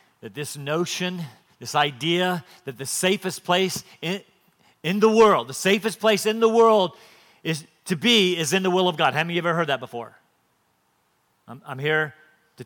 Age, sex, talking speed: 40-59, male, 190 wpm